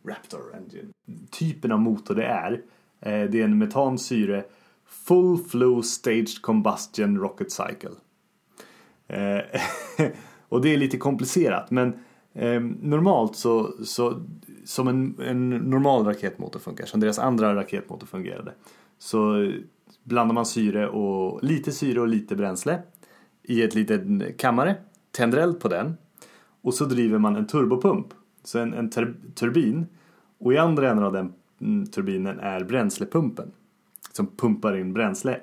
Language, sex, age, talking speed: Swedish, male, 30-49, 130 wpm